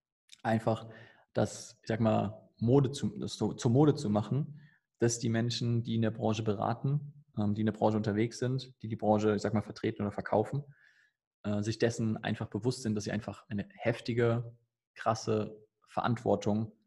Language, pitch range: German, 110-135 Hz